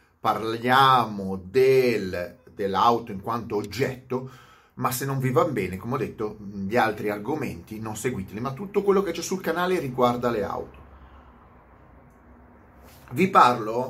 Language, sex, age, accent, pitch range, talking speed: Italian, male, 30-49, native, 90-125 Hz, 140 wpm